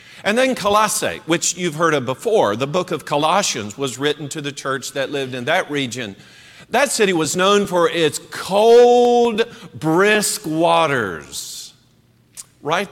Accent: American